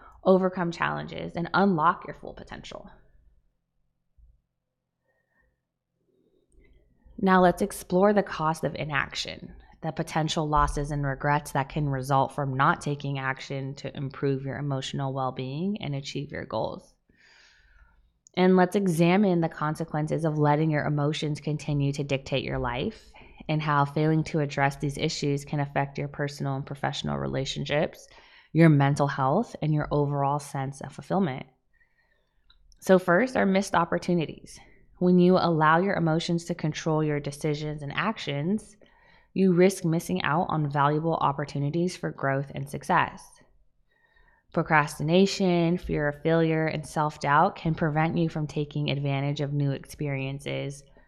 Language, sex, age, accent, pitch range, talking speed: English, female, 20-39, American, 140-170 Hz, 135 wpm